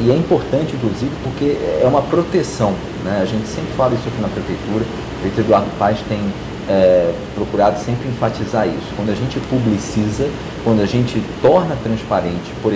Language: Portuguese